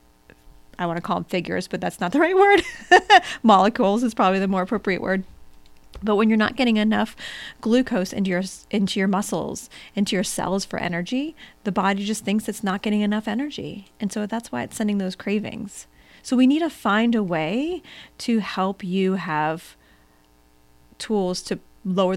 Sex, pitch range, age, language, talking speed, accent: female, 175-225 Hz, 30-49, English, 180 wpm, American